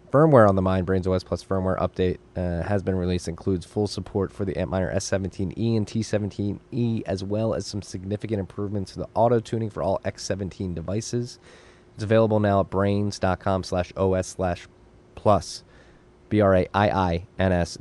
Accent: American